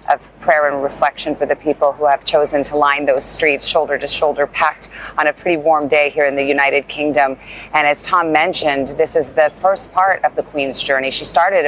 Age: 30-49